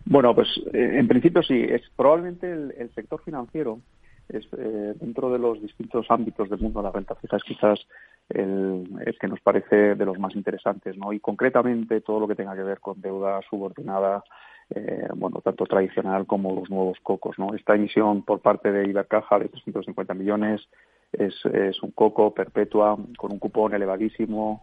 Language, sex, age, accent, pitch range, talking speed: Spanish, male, 40-59, Spanish, 100-115 Hz, 180 wpm